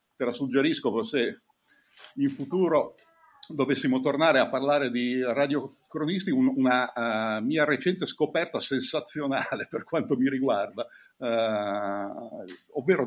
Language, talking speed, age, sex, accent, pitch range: Italian, 110 wpm, 50-69, male, native, 130-190 Hz